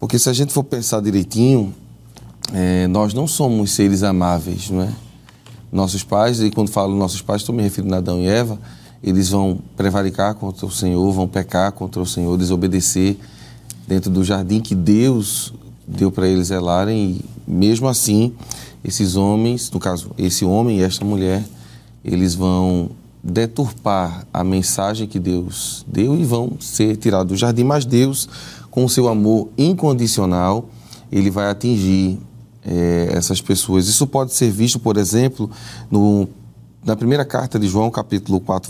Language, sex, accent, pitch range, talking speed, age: Portuguese, male, Brazilian, 95-120 Hz, 155 wpm, 20-39